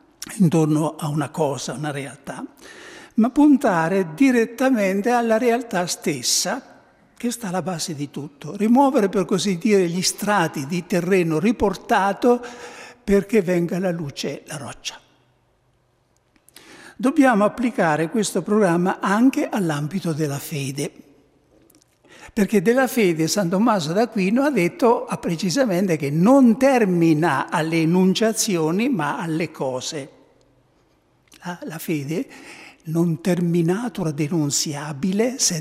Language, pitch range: Italian, 160-220 Hz